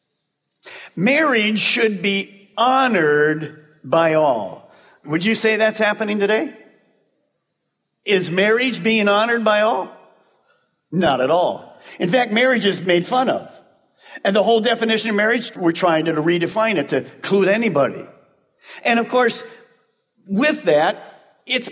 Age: 50-69